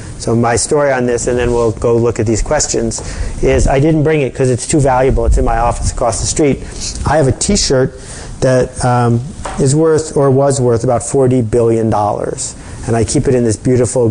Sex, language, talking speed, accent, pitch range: male, English, 215 wpm, American, 110-130 Hz